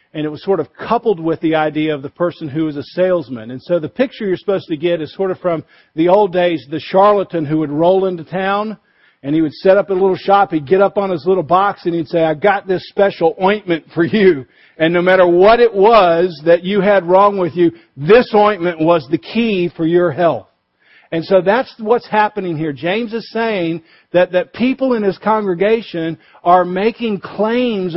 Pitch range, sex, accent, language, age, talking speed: 155-200 Hz, male, American, English, 50-69, 215 wpm